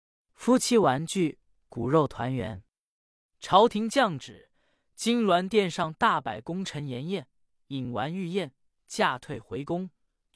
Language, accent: Chinese, native